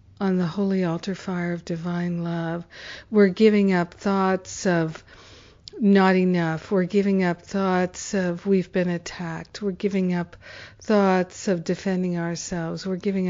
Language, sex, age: English, female, 60-79